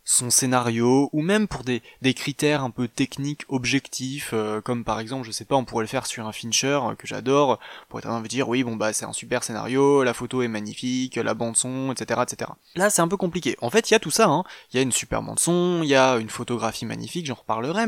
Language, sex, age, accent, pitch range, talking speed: French, male, 20-39, French, 120-160 Hz, 255 wpm